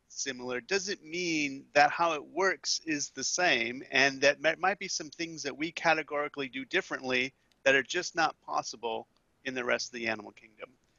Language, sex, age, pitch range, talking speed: English, male, 40-59, 135-165 Hz, 180 wpm